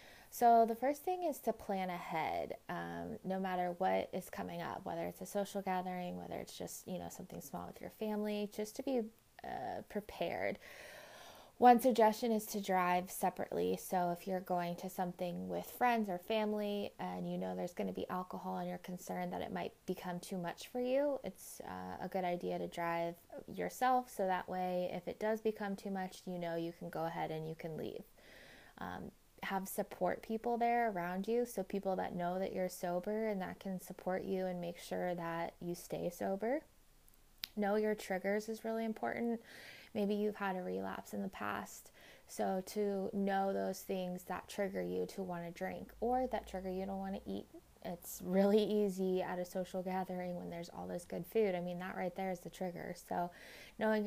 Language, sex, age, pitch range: English, female, 20-39, 175-210 Hz